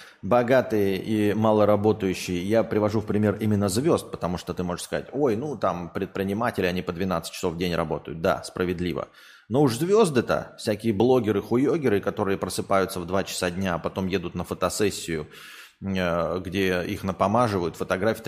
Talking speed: 160 wpm